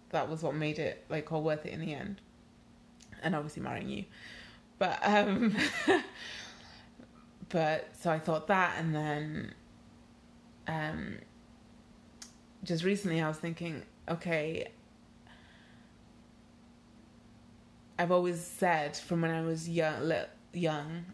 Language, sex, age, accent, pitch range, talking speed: English, female, 20-39, British, 155-170 Hz, 115 wpm